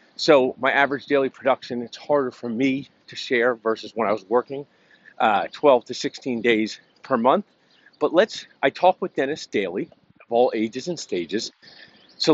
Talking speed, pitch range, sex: 175 wpm, 120-165 Hz, male